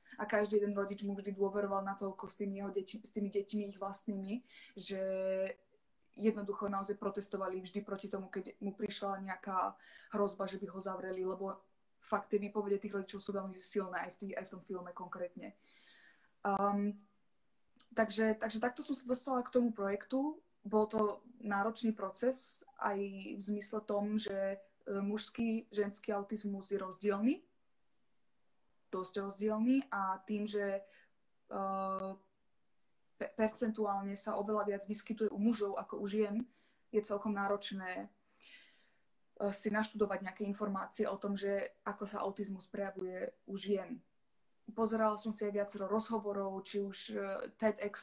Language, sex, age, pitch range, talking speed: Slovak, female, 20-39, 195-215 Hz, 140 wpm